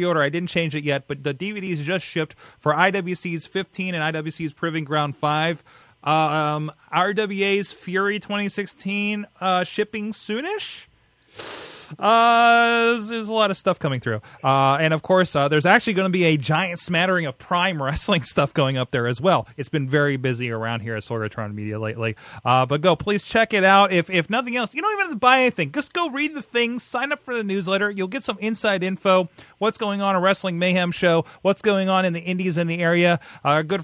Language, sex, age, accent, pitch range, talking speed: English, male, 30-49, American, 140-190 Hz, 210 wpm